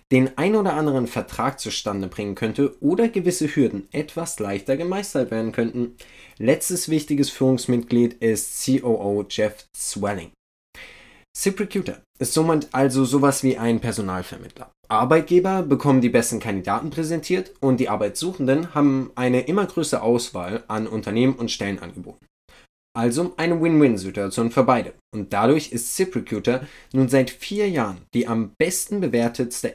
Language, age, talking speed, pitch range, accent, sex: German, 20-39, 135 wpm, 110-145 Hz, German, male